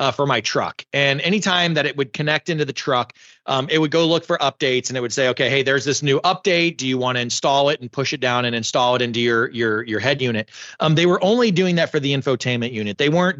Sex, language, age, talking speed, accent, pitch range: male, English, 30-49, 275 wpm, American, 125-155 Hz